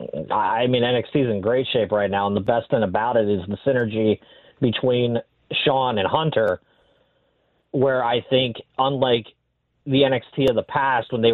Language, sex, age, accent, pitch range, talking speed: English, male, 30-49, American, 115-140 Hz, 175 wpm